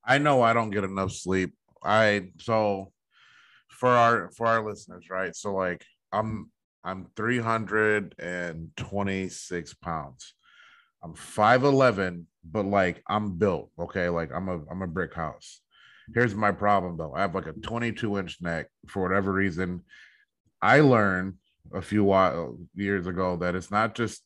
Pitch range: 90-110 Hz